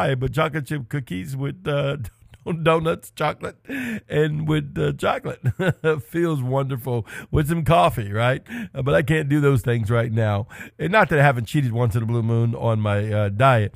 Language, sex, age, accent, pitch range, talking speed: English, male, 50-69, American, 120-160 Hz, 180 wpm